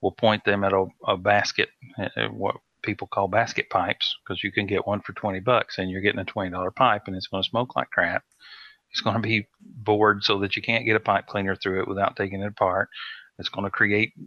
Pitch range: 95-115 Hz